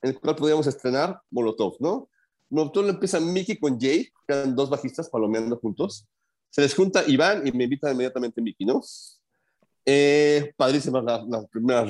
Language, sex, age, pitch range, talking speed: English, male, 40-59, 125-165 Hz, 170 wpm